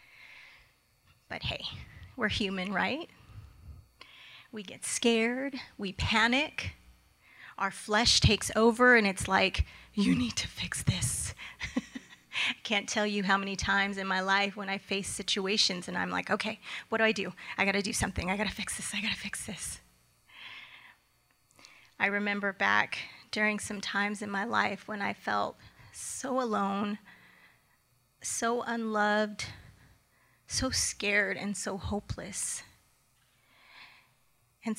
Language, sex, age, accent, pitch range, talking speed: English, female, 30-49, American, 190-220 Hz, 135 wpm